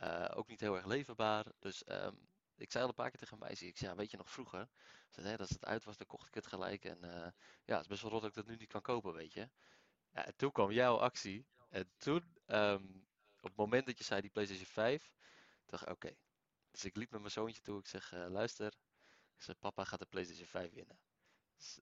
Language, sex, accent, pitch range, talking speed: Dutch, male, Dutch, 95-115 Hz, 260 wpm